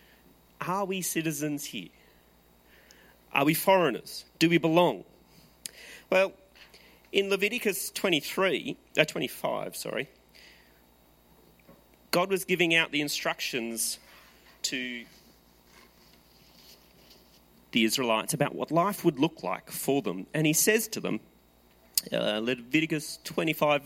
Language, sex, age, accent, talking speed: English, male, 40-59, Australian, 105 wpm